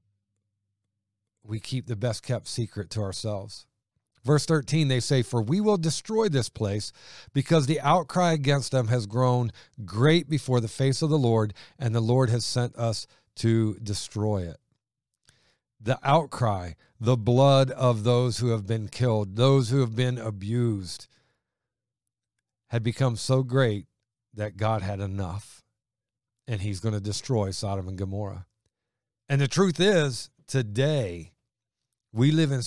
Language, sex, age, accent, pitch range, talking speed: English, male, 50-69, American, 105-130 Hz, 145 wpm